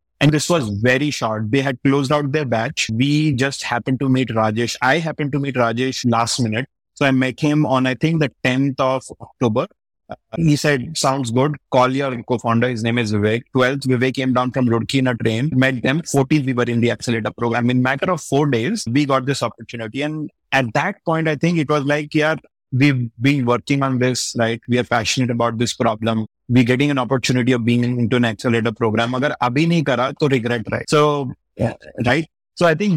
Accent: Indian